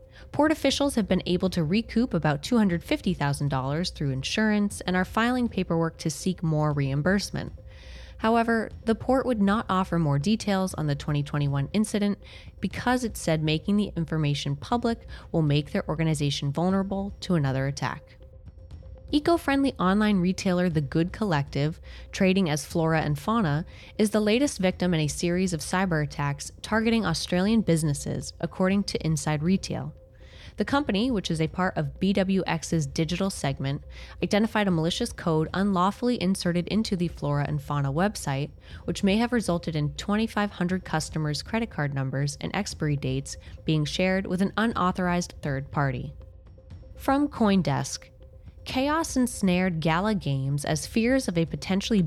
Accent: American